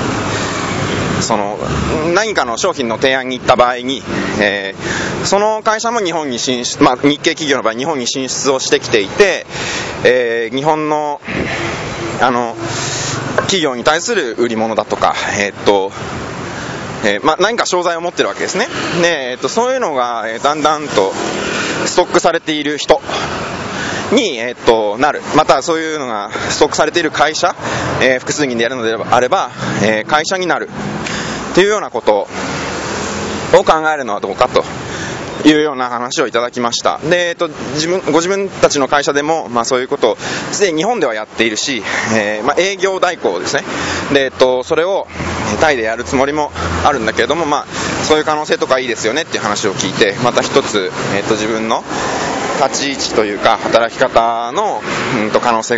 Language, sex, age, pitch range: Japanese, male, 20-39, 120-160 Hz